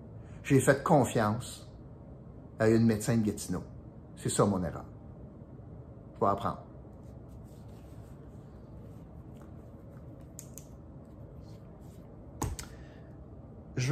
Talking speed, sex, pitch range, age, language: 70 wpm, male, 105-140 Hz, 50-69, French